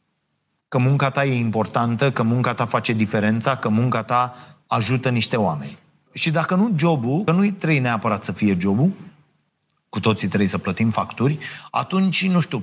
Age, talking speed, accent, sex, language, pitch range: 30-49, 170 wpm, native, male, Romanian, 115-155 Hz